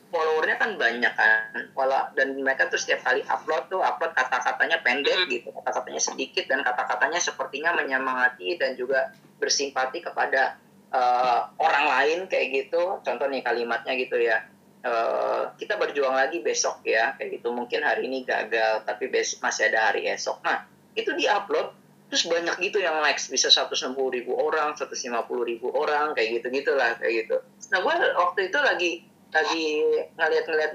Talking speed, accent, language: 150 wpm, native, Indonesian